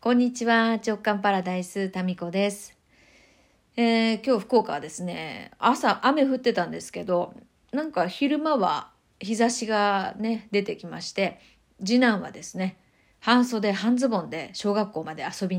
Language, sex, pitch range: Japanese, female, 195-265 Hz